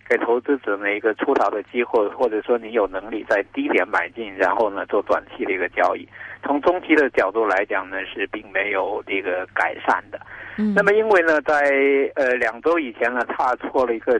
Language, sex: Chinese, male